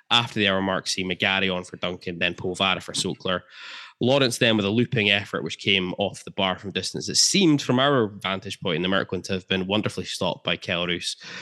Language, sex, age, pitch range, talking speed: English, male, 10-29, 90-110 Hz, 220 wpm